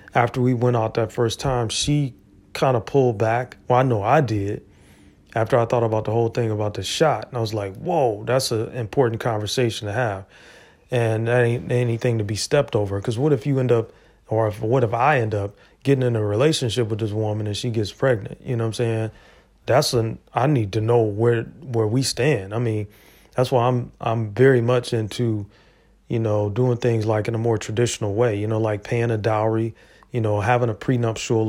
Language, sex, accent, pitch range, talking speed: English, male, American, 110-135 Hz, 215 wpm